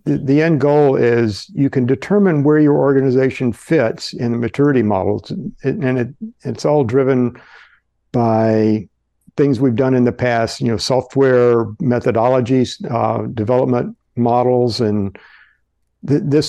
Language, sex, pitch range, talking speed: English, male, 110-130 Hz, 135 wpm